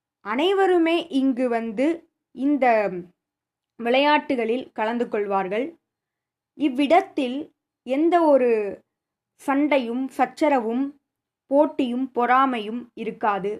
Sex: female